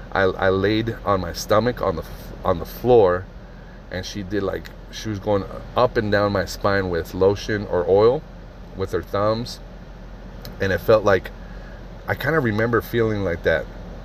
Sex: male